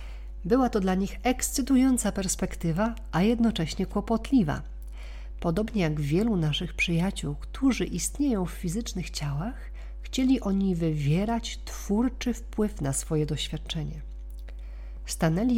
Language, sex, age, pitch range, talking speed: Polish, female, 50-69, 140-195 Hz, 110 wpm